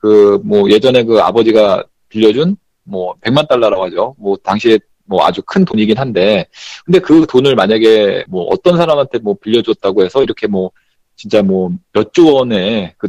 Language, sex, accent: Korean, male, native